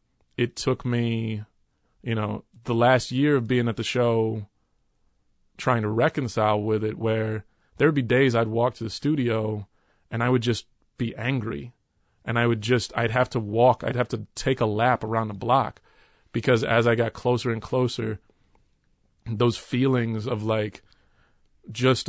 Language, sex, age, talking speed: English, male, 30-49, 170 wpm